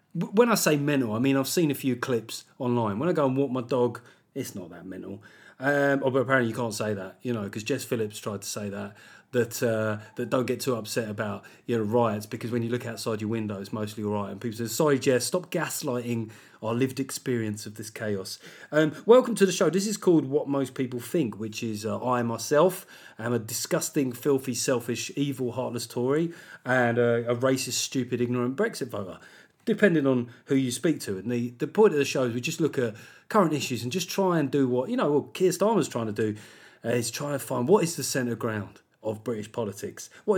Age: 30-49